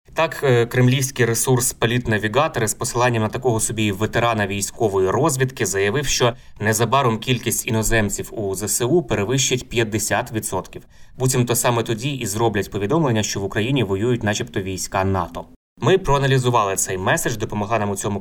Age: 20-39